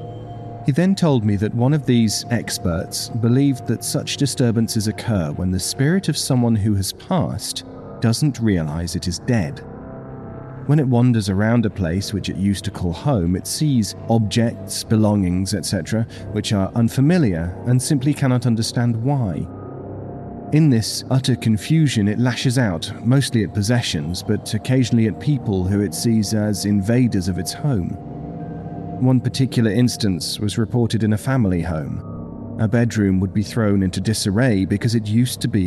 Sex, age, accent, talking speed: male, 40-59, British, 160 wpm